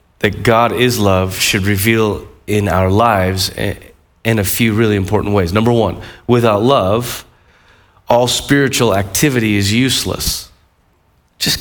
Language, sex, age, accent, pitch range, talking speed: English, male, 30-49, American, 105-130 Hz, 130 wpm